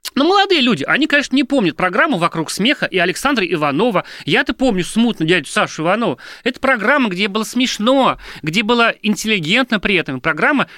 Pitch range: 155-220 Hz